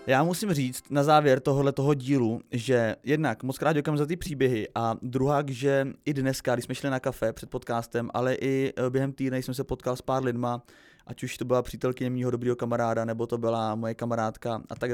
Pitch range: 120-150 Hz